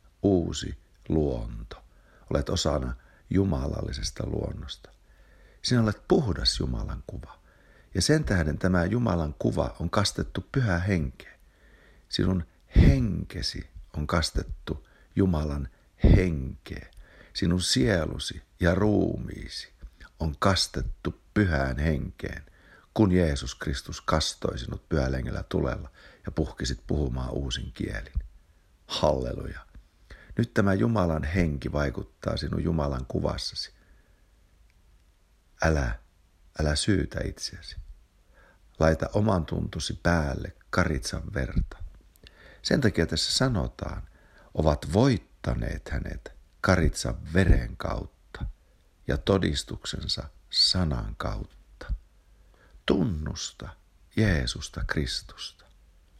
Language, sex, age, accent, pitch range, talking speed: Finnish, male, 60-79, native, 75-95 Hz, 90 wpm